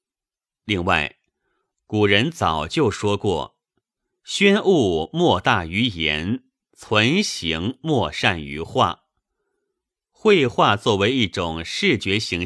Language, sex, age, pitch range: Chinese, male, 30-49, 90-150 Hz